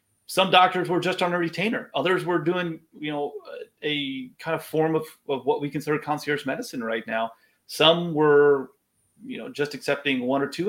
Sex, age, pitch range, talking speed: male, 30-49, 130-210 Hz, 190 wpm